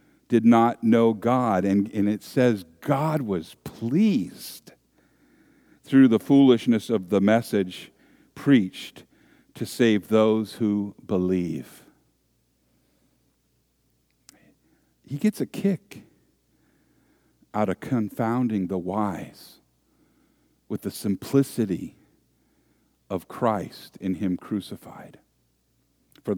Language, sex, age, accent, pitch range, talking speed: English, male, 50-69, American, 95-120 Hz, 95 wpm